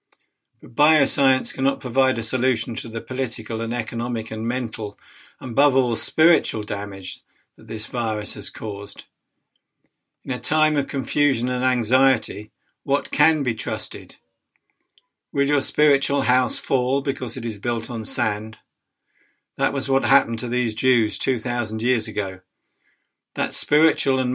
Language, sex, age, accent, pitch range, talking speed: English, male, 60-79, British, 110-135 Hz, 145 wpm